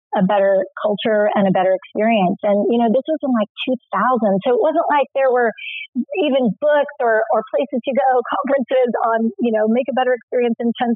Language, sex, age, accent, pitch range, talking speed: English, female, 40-59, American, 210-255 Hz, 210 wpm